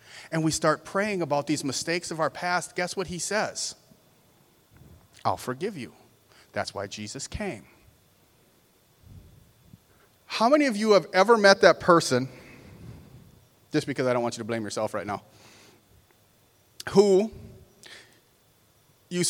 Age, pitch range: 40-59, 115-160 Hz